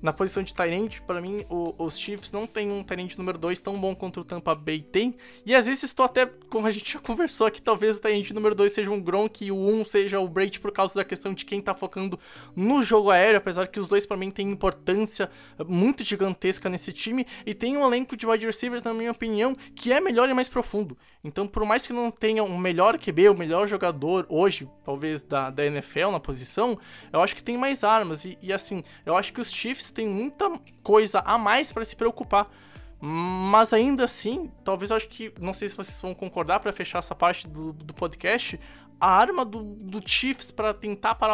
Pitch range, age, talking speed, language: 185-225 Hz, 20-39, 225 wpm, Portuguese